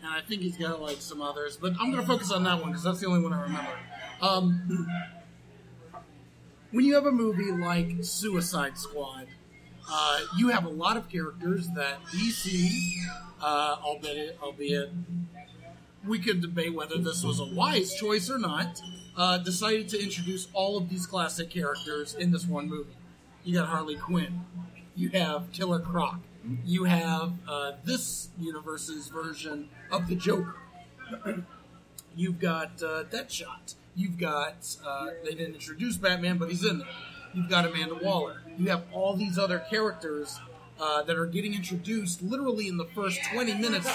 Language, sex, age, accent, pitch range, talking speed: English, male, 40-59, American, 160-195 Hz, 165 wpm